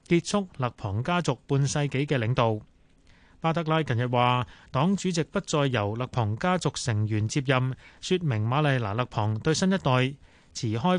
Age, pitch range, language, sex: 20-39, 115-165 Hz, Chinese, male